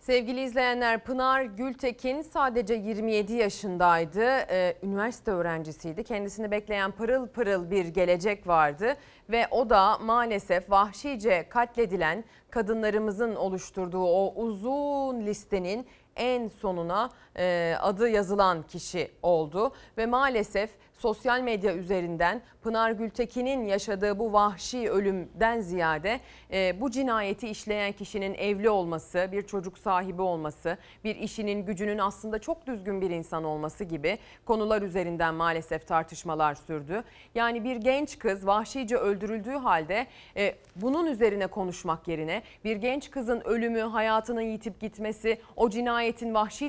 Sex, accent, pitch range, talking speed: female, native, 185-235 Hz, 115 wpm